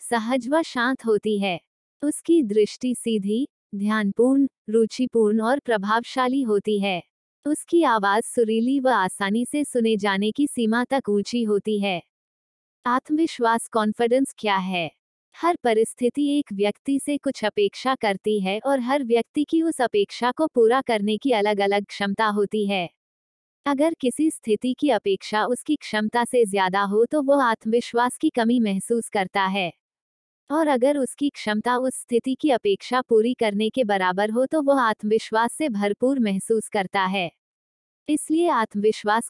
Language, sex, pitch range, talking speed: Hindi, female, 210-260 Hz, 150 wpm